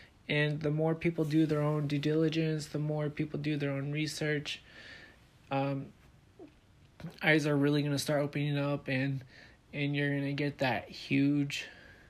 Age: 20-39